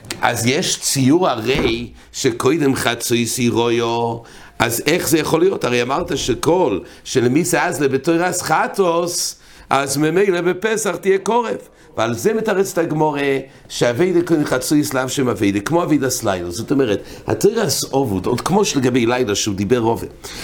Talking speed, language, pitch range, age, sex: 140 wpm, English, 120-175 Hz, 60-79, male